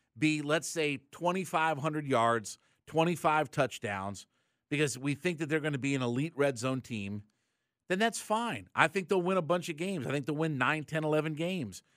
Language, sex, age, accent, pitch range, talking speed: English, male, 50-69, American, 125-165 Hz, 195 wpm